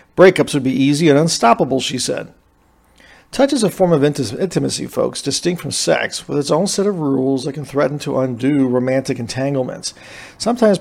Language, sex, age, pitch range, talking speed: English, male, 40-59, 135-165 Hz, 180 wpm